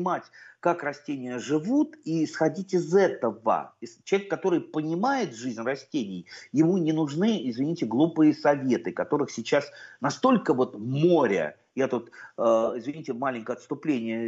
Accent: native